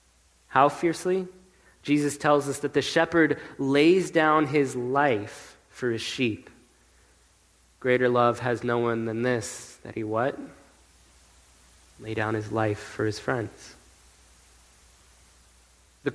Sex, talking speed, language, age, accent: male, 125 wpm, English, 20-39, American